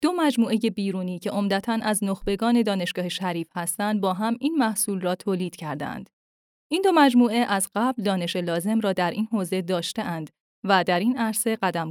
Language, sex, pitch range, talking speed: Persian, female, 180-240 Hz, 170 wpm